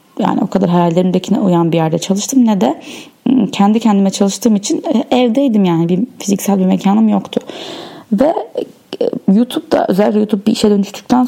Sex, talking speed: female, 150 wpm